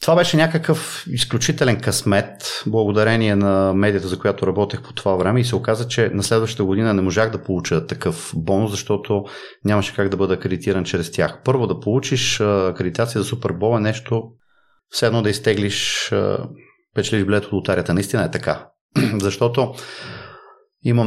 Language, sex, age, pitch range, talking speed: Bulgarian, male, 30-49, 100-130 Hz, 155 wpm